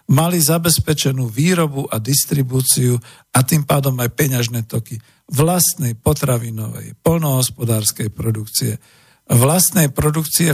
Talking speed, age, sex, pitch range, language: 95 wpm, 50-69, male, 120-150 Hz, Slovak